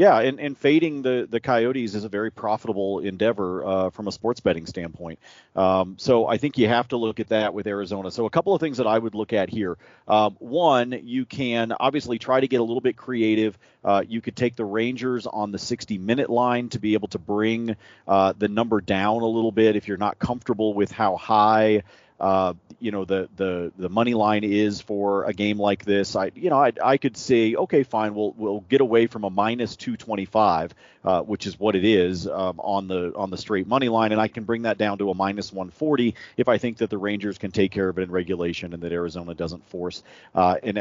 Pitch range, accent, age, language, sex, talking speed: 95-115 Hz, American, 40-59, English, male, 230 wpm